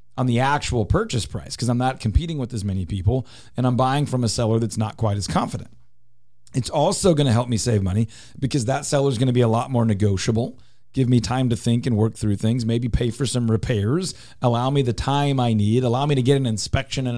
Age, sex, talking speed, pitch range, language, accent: 40-59, male, 235 wpm, 115-140 Hz, English, American